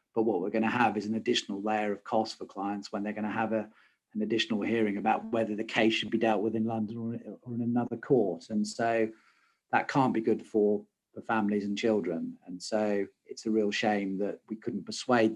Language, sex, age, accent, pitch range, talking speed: English, male, 40-59, British, 105-120 Hz, 230 wpm